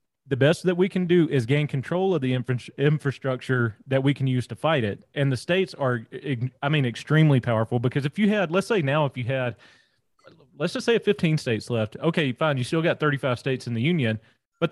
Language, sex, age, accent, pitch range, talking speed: English, male, 30-49, American, 125-165 Hz, 220 wpm